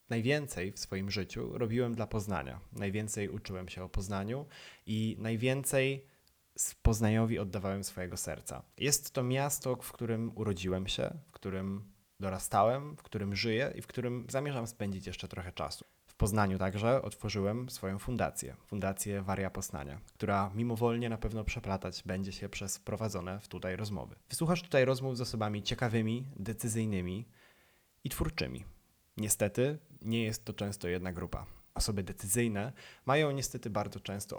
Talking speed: 145 wpm